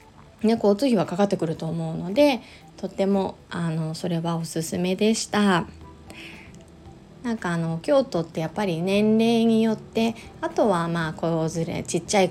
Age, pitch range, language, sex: 20-39, 170-235 Hz, Japanese, female